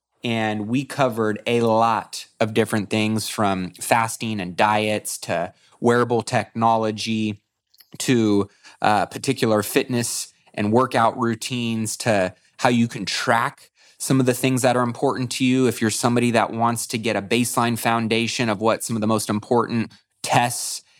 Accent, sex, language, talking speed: American, male, English, 155 wpm